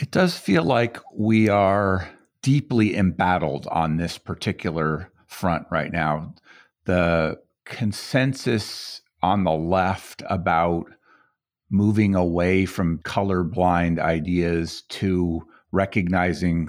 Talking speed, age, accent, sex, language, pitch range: 95 wpm, 50-69, American, male, English, 85-105 Hz